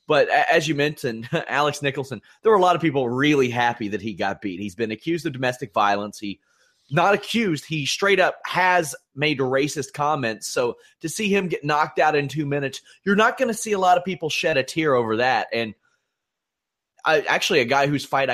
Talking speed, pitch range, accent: 215 wpm, 115-165 Hz, American